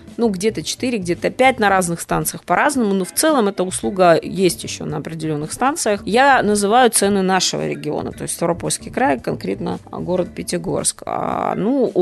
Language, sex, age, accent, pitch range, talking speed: Russian, female, 20-39, native, 175-225 Hz, 160 wpm